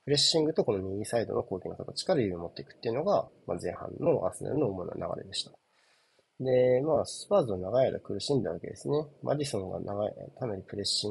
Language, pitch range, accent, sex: Japanese, 100-145 Hz, native, male